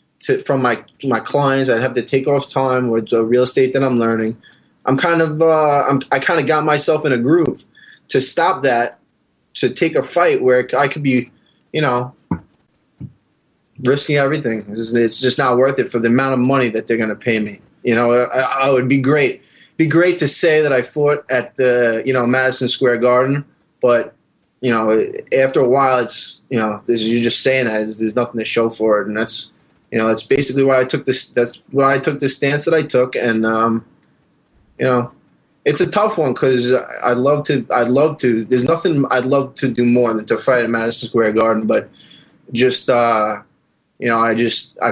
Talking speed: 220 wpm